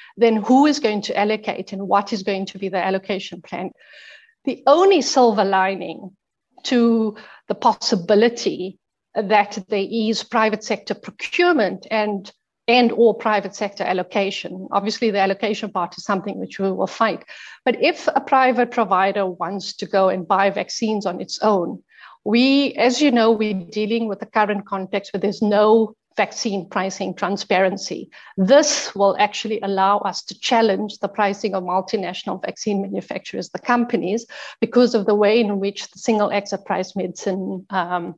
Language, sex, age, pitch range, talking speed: English, female, 50-69, 195-230 Hz, 160 wpm